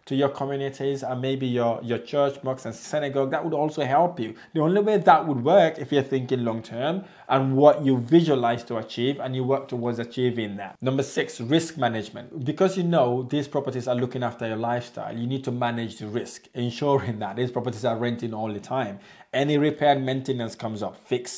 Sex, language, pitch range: male, English, 120-145 Hz